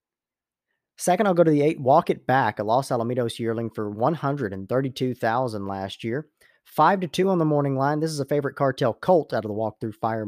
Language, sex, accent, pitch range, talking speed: English, male, American, 105-140 Hz, 205 wpm